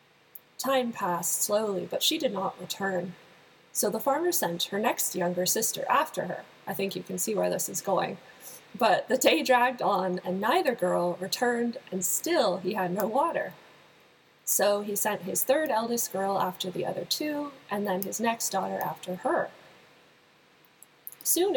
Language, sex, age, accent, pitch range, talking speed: English, female, 20-39, American, 185-240 Hz, 170 wpm